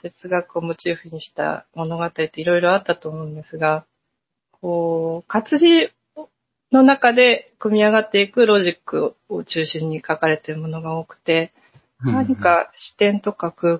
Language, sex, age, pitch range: Japanese, female, 40-59, 160-205 Hz